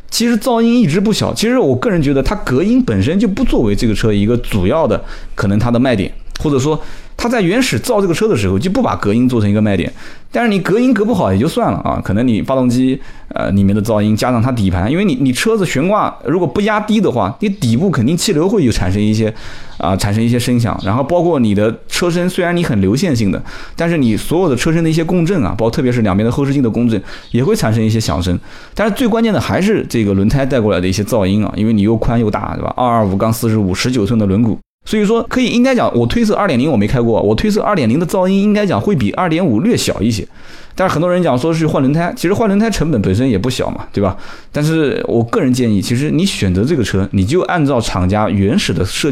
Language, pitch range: Chinese, 105-180 Hz